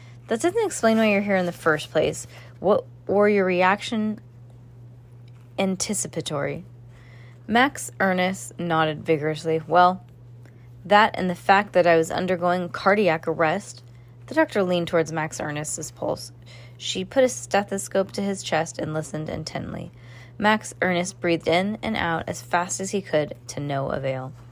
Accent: American